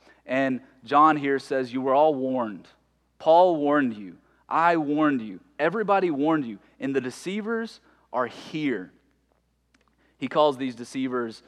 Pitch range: 125-165 Hz